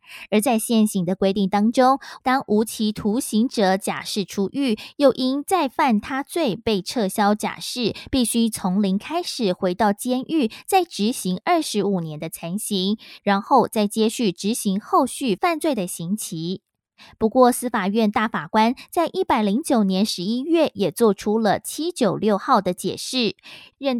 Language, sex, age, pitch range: Chinese, female, 20-39, 200-260 Hz